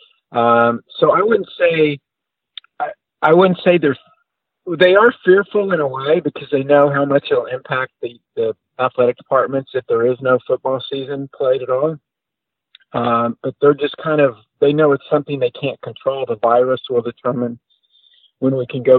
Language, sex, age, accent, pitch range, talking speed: English, male, 50-69, American, 120-155 Hz, 185 wpm